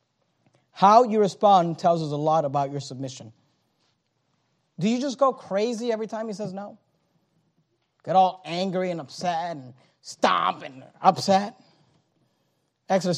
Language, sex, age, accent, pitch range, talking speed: English, male, 30-49, American, 155-225 Hz, 135 wpm